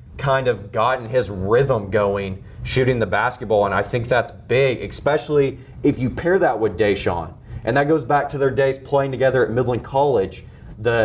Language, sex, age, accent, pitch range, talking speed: English, male, 30-49, American, 120-150 Hz, 185 wpm